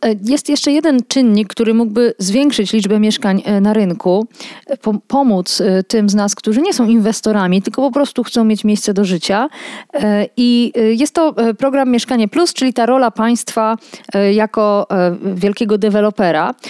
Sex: female